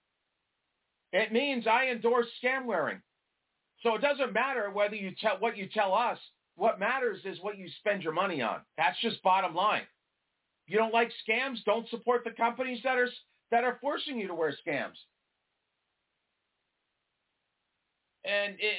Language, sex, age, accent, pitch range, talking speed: English, male, 50-69, American, 180-240 Hz, 155 wpm